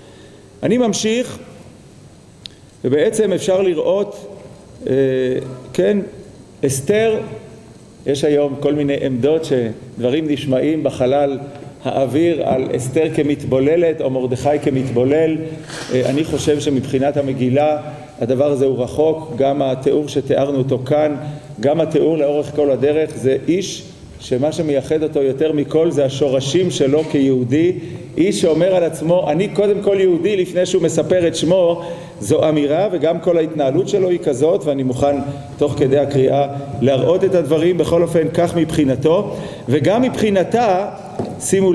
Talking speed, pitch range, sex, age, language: 125 wpm, 140-180 Hz, male, 40-59, Hebrew